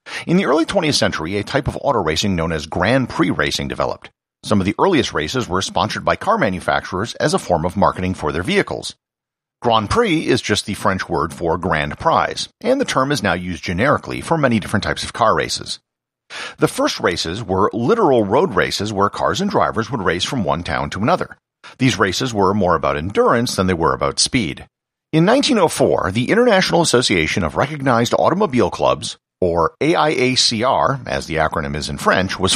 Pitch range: 85-130 Hz